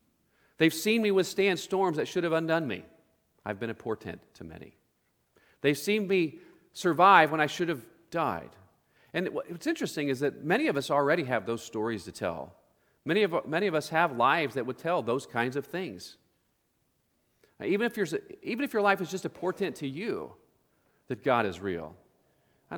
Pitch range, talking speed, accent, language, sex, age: 115-160 Hz, 190 wpm, American, English, male, 40-59